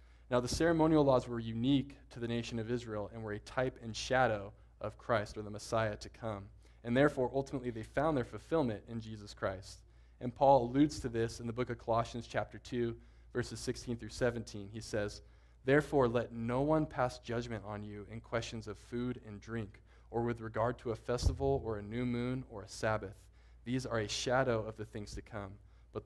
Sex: male